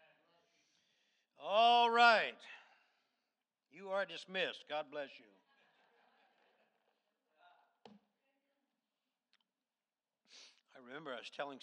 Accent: American